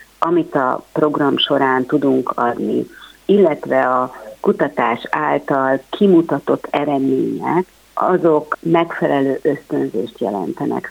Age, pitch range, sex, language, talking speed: 50-69, 130-155 Hz, female, Hungarian, 90 wpm